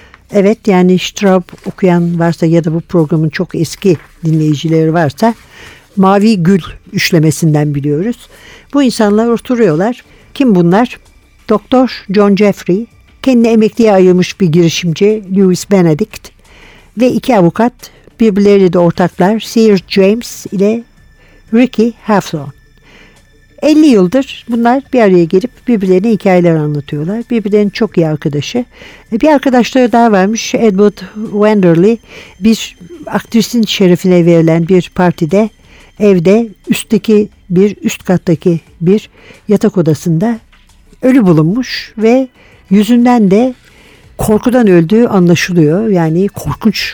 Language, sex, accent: Turkish, female, native